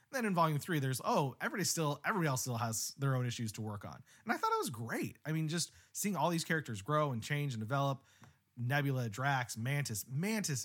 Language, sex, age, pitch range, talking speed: English, male, 30-49, 125-165 Hz, 225 wpm